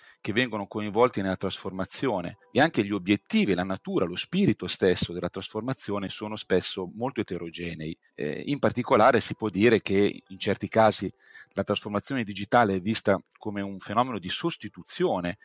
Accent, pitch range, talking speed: native, 95-120 Hz, 155 wpm